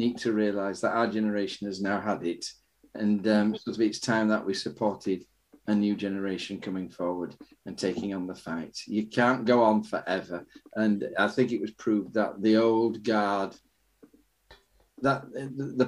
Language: English